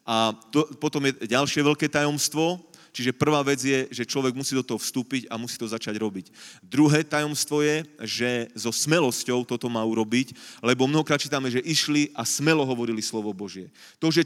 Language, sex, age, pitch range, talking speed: Slovak, male, 30-49, 120-145 Hz, 180 wpm